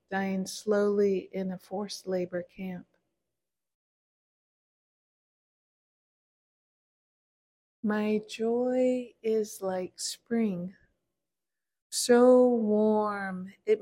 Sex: female